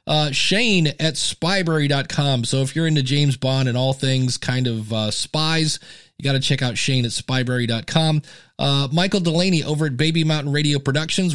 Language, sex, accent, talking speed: English, male, American, 175 wpm